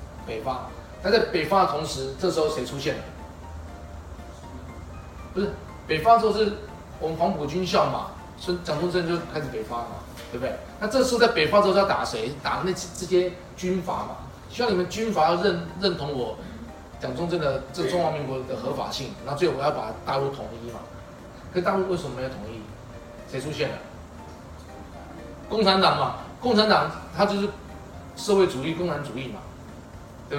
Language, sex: Chinese, male